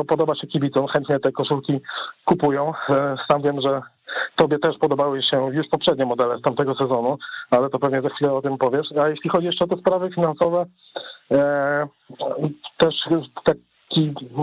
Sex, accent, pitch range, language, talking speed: male, native, 140-160 Hz, Polish, 165 wpm